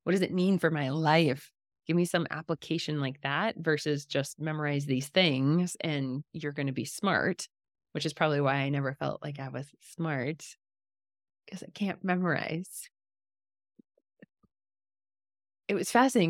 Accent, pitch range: American, 145-185 Hz